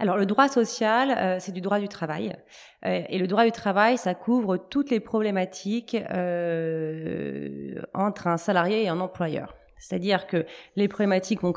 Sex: female